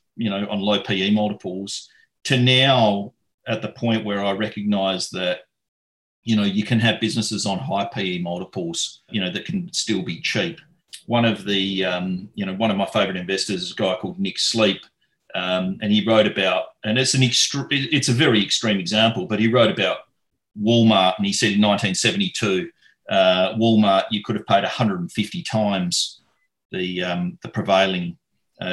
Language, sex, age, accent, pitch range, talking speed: English, male, 40-59, Australian, 95-120 Hz, 180 wpm